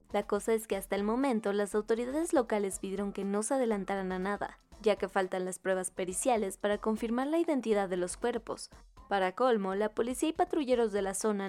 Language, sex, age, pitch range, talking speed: Spanish, female, 20-39, 195-245 Hz, 205 wpm